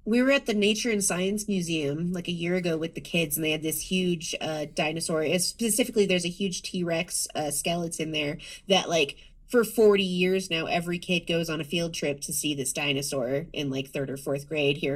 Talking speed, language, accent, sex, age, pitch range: 215 wpm, English, American, female, 30-49, 160-195 Hz